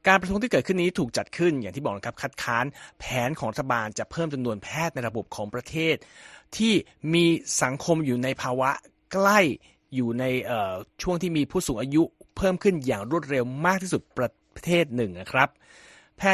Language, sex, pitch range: Thai, male, 125-170 Hz